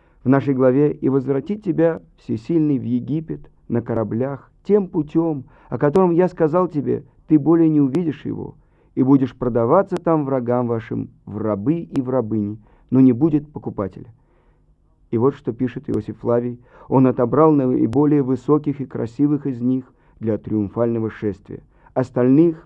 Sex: male